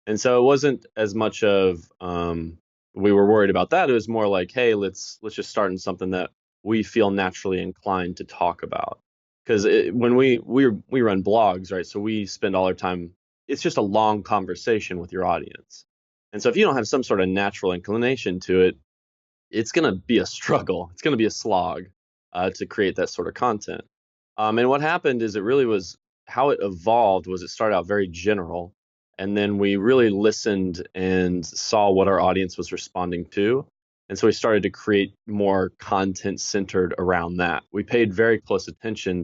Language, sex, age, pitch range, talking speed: English, male, 20-39, 90-110 Hz, 200 wpm